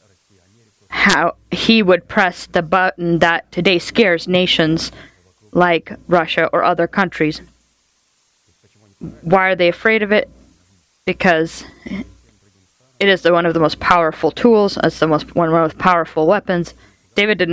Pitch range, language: 165-195 Hz, English